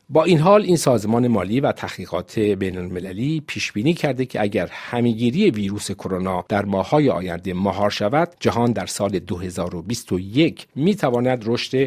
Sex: male